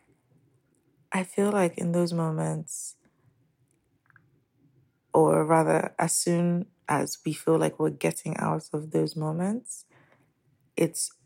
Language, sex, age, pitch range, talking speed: English, female, 20-39, 135-165 Hz, 110 wpm